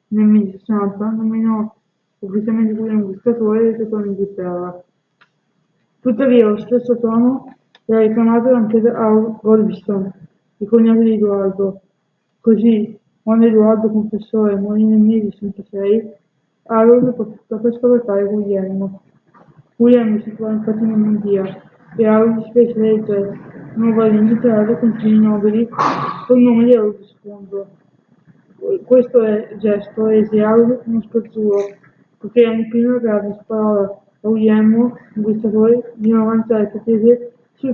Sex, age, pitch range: female, 20-39, 205-230 Hz